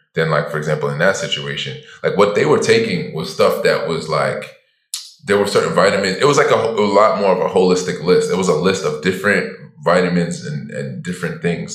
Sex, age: male, 20-39